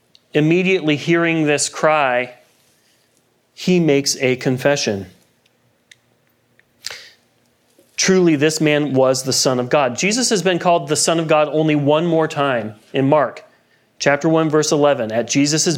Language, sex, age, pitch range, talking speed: English, male, 40-59, 115-155 Hz, 135 wpm